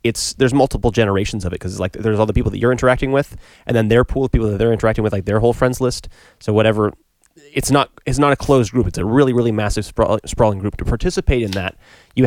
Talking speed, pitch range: 260 wpm, 95-120 Hz